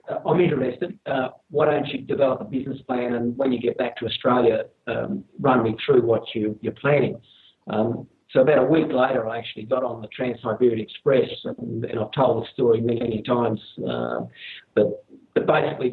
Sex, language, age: male, English, 50-69